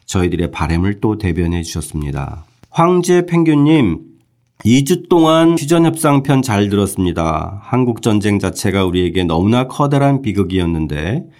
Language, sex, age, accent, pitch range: Korean, male, 40-59, native, 90-130 Hz